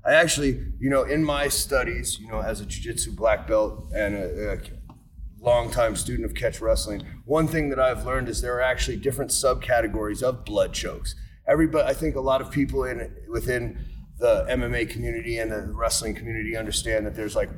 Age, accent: 30-49, American